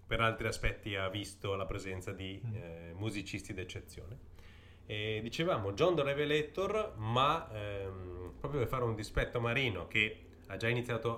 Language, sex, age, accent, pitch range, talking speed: Italian, male, 30-49, native, 95-120 Hz, 150 wpm